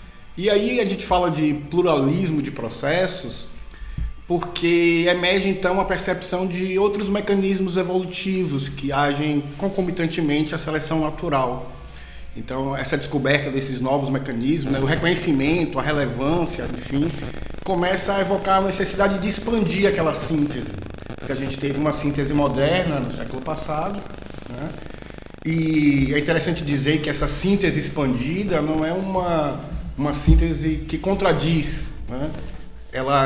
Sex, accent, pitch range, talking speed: male, Brazilian, 140-175 Hz, 130 wpm